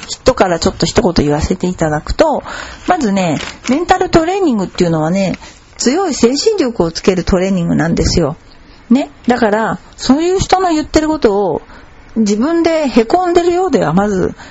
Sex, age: female, 50-69